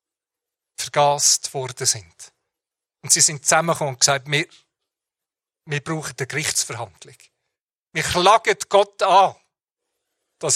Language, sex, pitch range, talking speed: German, male, 130-155 Hz, 110 wpm